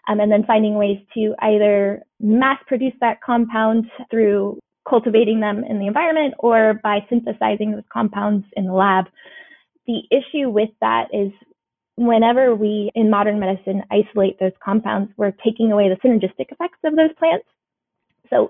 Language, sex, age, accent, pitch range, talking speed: English, female, 20-39, American, 200-230 Hz, 150 wpm